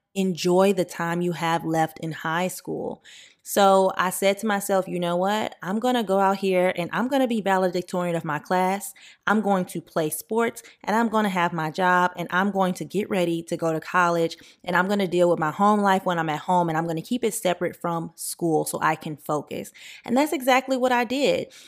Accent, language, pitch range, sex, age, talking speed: American, English, 170-210 Hz, female, 20-39, 240 wpm